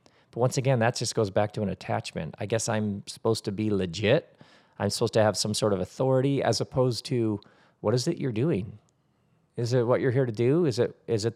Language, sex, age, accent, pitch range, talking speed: English, male, 40-59, American, 115-145 Hz, 230 wpm